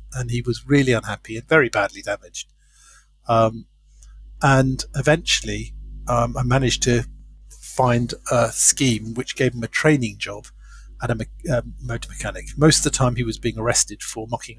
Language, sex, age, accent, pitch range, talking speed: English, male, 50-69, British, 105-135 Hz, 165 wpm